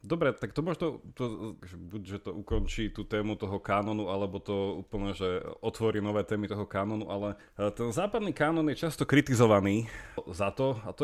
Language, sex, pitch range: Slovak, male, 90-110 Hz